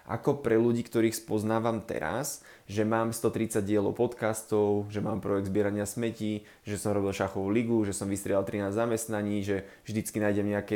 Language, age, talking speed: Slovak, 20-39, 165 wpm